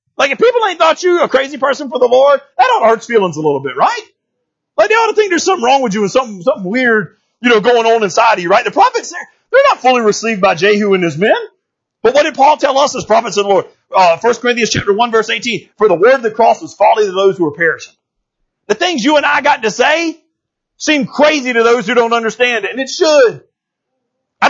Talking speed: 255 wpm